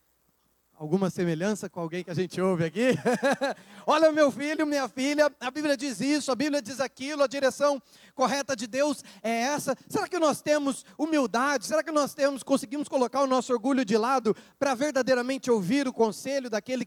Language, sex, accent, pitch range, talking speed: Portuguese, male, Brazilian, 210-270 Hz, 180 wpm